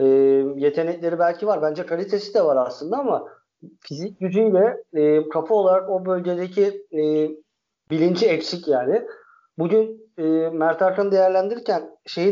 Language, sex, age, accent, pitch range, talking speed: Turkish, male, 50-69, native, 150-205 Hz, 130 wpm